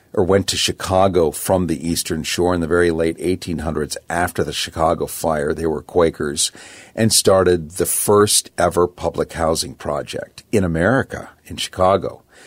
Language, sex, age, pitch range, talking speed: English, male, 50-69, 85-100 Hz, 155 wpm